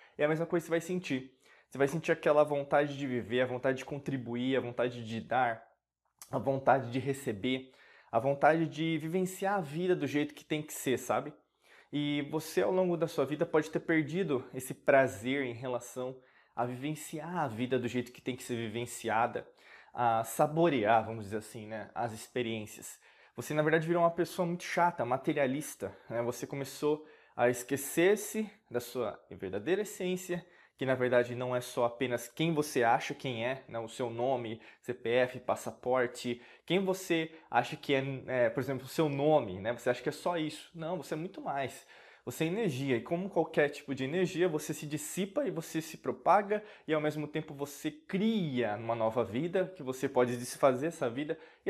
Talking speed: 190 wpm